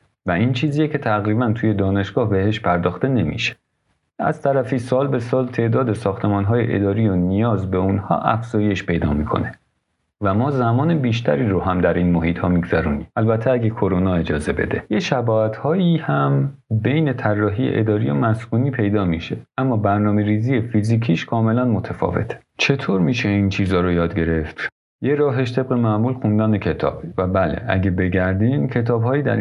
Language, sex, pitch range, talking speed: Persian, male, 95-130 Hz, 155 wpm